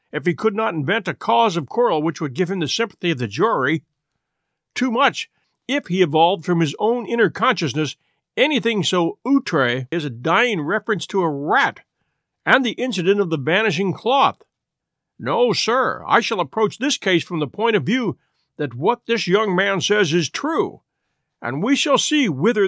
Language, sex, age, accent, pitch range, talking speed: English, male, 50-69, American, 150-210 Hz, 185 wpm